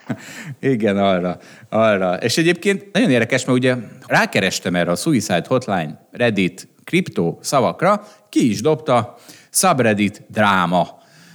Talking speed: 115 wpm